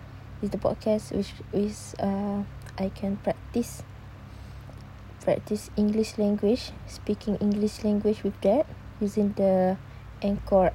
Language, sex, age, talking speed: Malay, female, 20-39, 110 wpm